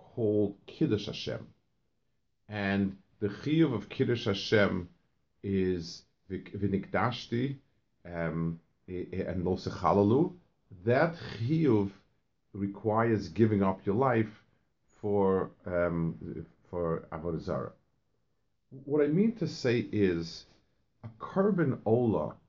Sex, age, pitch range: male, 50-69, 95-125 Hz